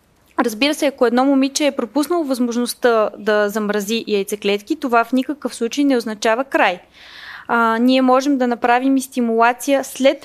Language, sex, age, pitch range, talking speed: Bulgarian, female, 20-39, 220-270 Hz, 150 wpm